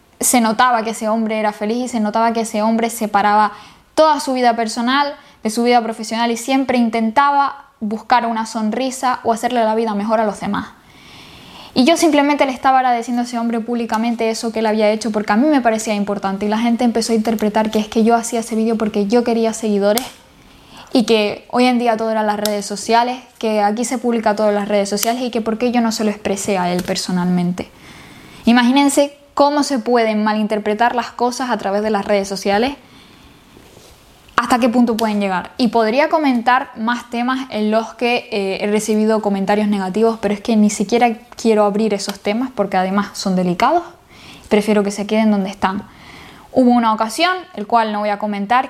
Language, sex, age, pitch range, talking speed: Spanish, female, 10-29, 210-240 Hz, 200 wpm